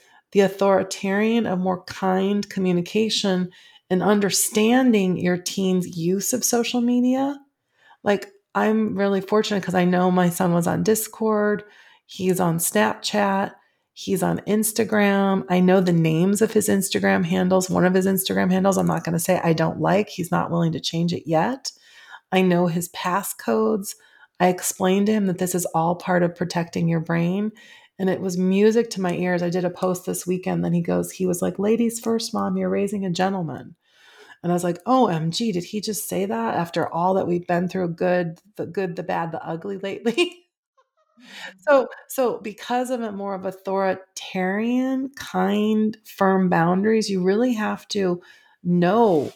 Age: 30-49